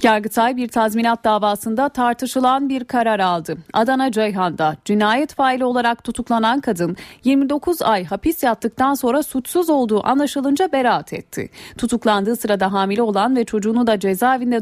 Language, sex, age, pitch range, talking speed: Turkish, female, 40-59, 200-255 Hz, 135 wpm